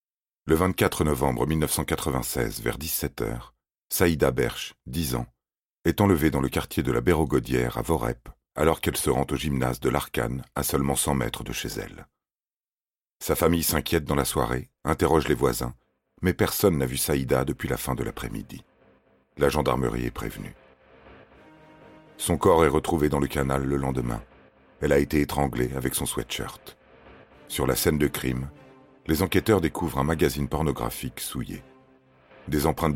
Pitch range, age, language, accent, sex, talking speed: 65-80 Hz, 40-59, French, French, male, 160 wpm